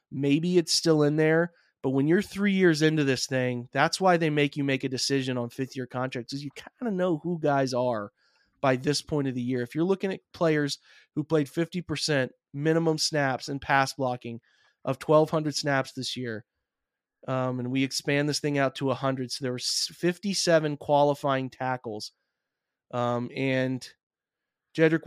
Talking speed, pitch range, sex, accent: 175 wpm, 130-155 Hz, male, American